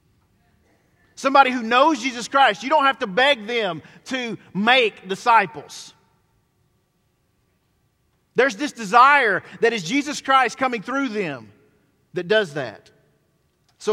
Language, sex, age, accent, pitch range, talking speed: English, male, 40-59, American, 180-240 Hz, 120 wpm